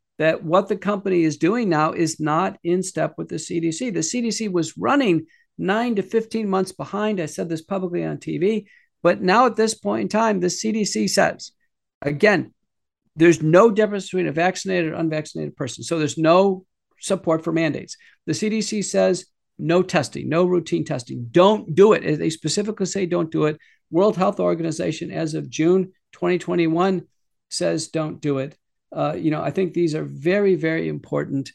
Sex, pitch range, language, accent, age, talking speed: male, 165-225 Hz, English, American, 50-69, 175 wpm